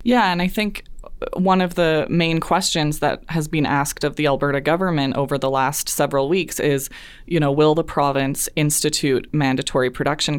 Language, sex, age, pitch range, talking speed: English, female, 20-39, 135-160 Hz, 180 wpm